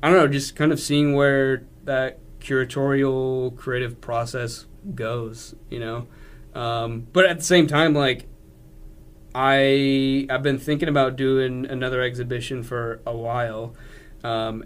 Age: 20-39